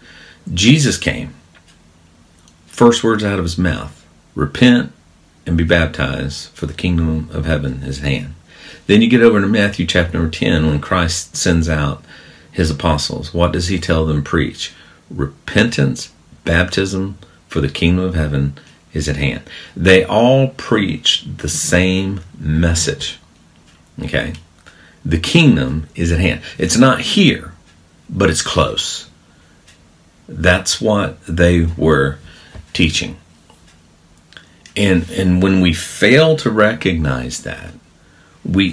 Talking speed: 130 wpm